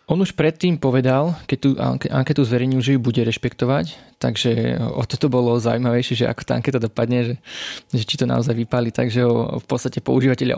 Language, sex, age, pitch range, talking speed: Slovak, male, 20-39, 115-130 Hz, 185 wpm